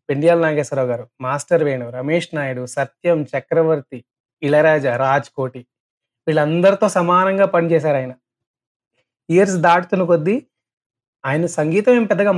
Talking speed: 110 wpm